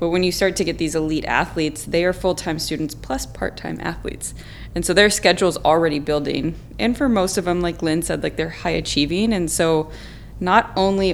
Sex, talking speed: female, 210 wpm